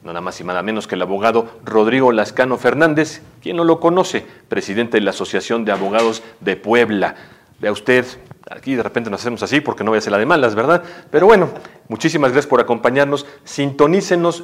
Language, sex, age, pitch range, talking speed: Spanish, male, 40-59, 105-140 Hz, 200 wpm